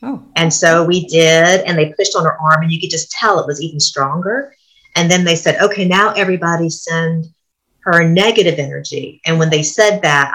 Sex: female